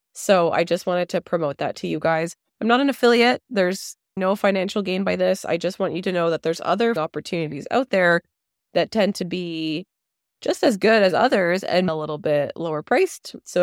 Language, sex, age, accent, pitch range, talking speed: English, female, 20-39, American, 160-210 Hz, 210 wpm